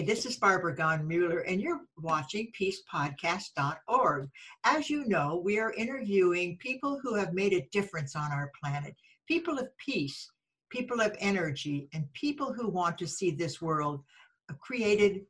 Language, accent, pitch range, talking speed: English, American, 165-230 Hz, 155 wpm